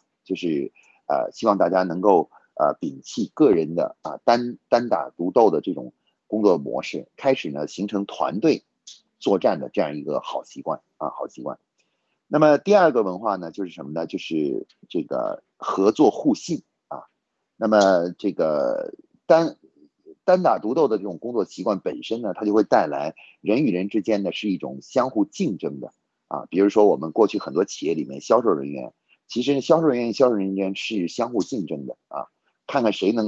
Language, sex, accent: Chinese, male, native